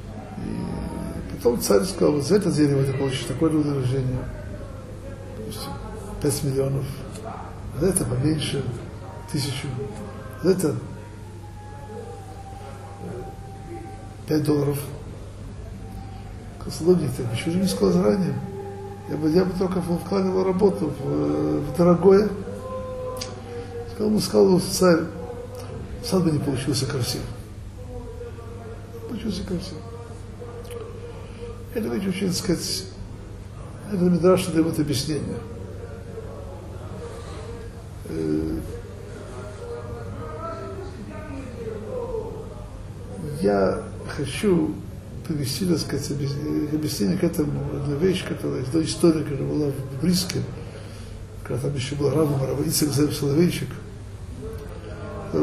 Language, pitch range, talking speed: Russian, 100-150 Hz, 95 wpm